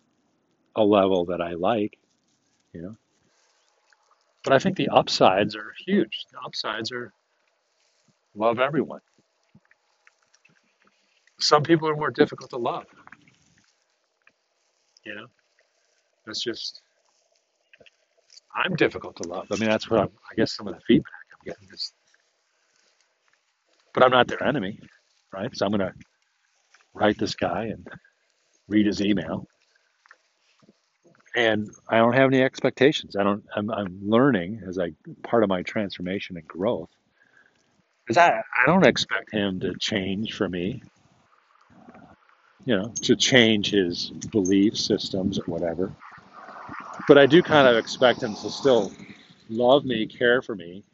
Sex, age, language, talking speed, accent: male, 50-69, English, 135 wpm, American